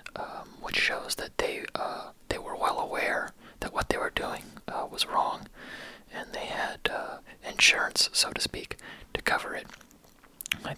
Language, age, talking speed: English, 20-39, 165 wpm